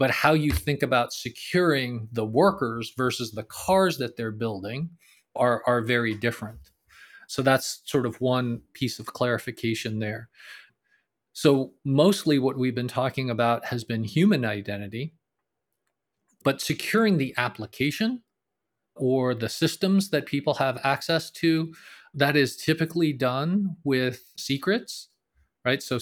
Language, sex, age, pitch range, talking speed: English, male, 40-59, 120-145 Hz, 135 wpm